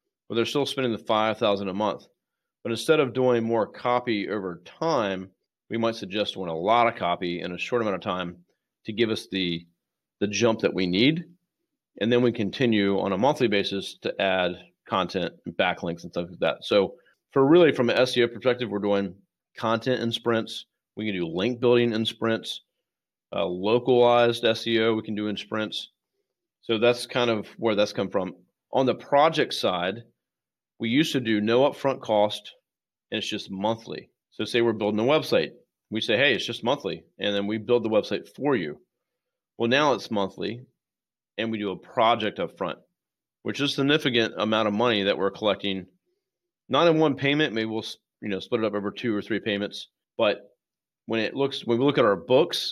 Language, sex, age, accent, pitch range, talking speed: English, male, 40-59, American, 100-125 Hz, 195 wpm